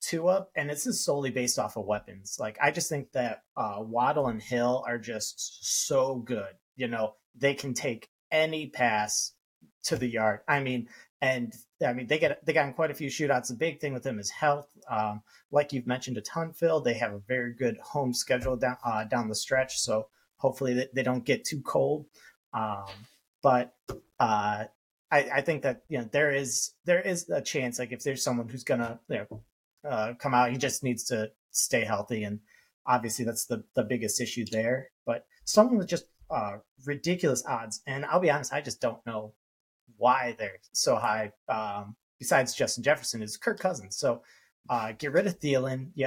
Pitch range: 110-140 Hz